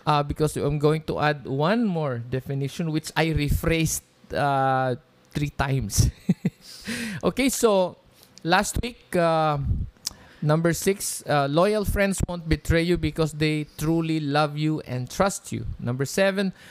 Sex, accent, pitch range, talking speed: male, Filipino, 140-180 Hz, 135 wpm